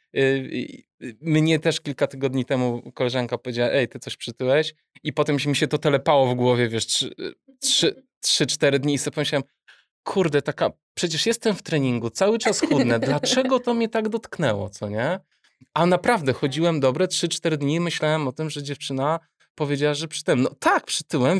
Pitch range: 125-160 Hz